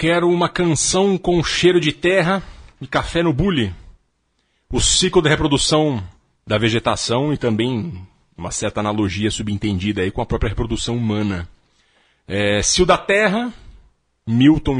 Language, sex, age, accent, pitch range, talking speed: Portuguese, male, 40-59, Brazilian, 105-145 Hz, 140 wpm